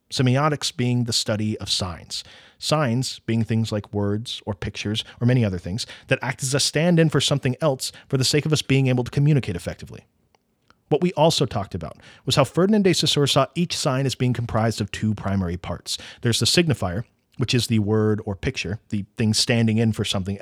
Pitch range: 110-145 Hz